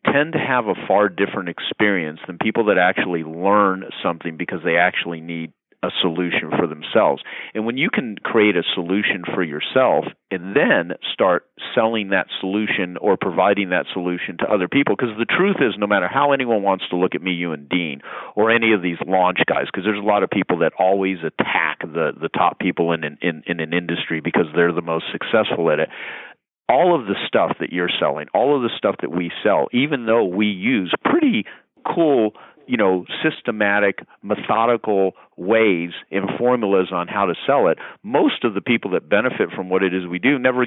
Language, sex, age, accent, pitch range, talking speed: English, male, 40-59, American, 85-110 Hz, 200 wpm